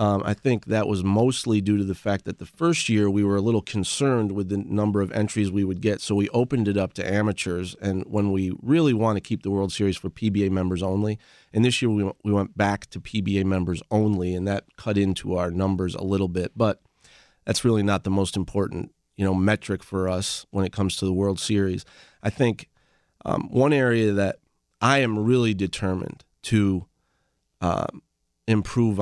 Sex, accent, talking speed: male, American, 210 wpm